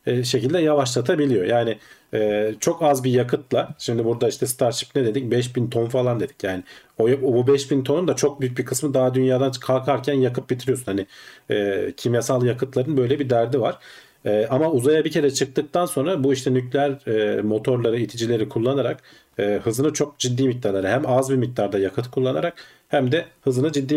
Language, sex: Turkish, male